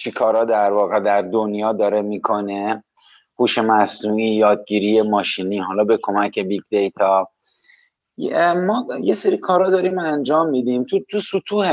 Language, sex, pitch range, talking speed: Persian, male, 105-145 Hz, 140 wpm